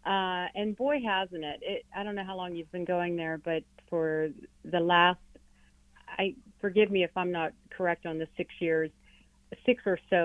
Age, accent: 40-59, American